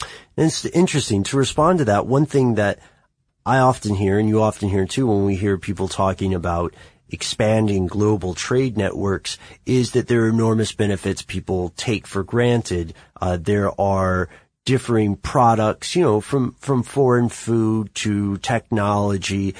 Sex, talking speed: male, 155 wpm